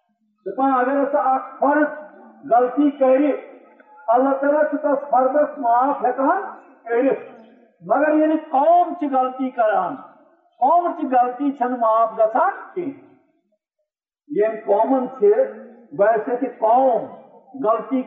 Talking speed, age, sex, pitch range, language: 90 wpm, 50-69, male, 235-290 Hz, Urdu